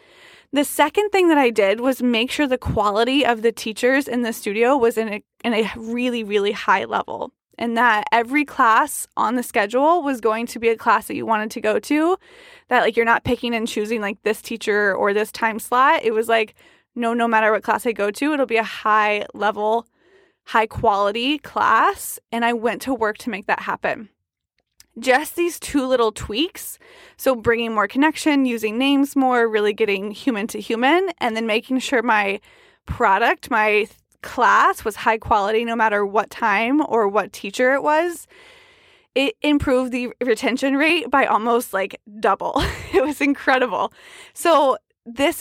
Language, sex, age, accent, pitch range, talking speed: English, female, 20-39, American, 220-290 Hz, 180 wpm